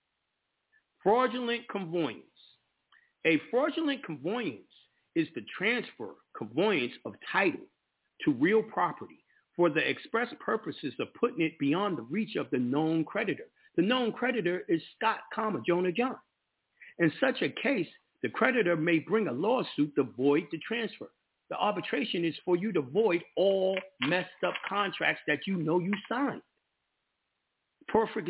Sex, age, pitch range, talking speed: male, 50-69, 175-240 Hz, 140 wpm